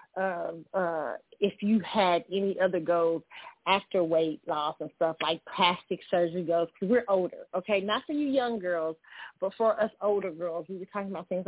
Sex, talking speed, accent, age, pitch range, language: female, 190 wpm, American, 30-49, 165-205 Hz, English